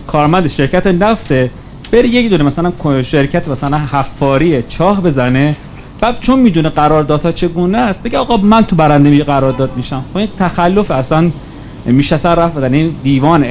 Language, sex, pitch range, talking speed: Persian, male, 140-185 Hz, 155 wpm